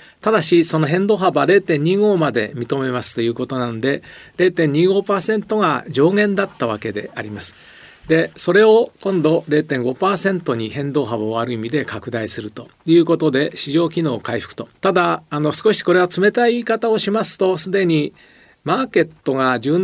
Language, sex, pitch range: Japanese, male, 125-180 Hz